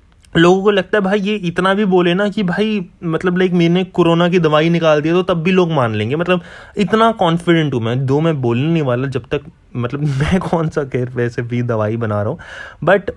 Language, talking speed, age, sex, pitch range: Hindi, 230 wpm, 20-39, male, 115-180 Hz